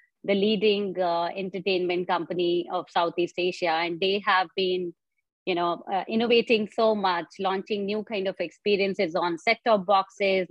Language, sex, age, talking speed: English, female, 30-49, 150 wpm